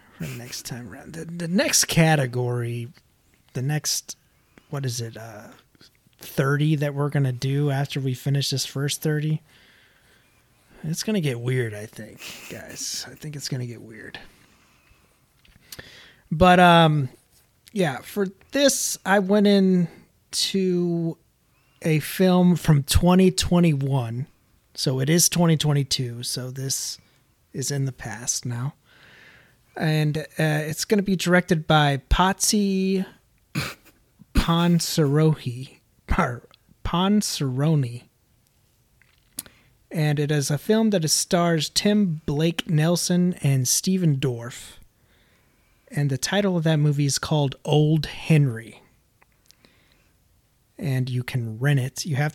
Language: English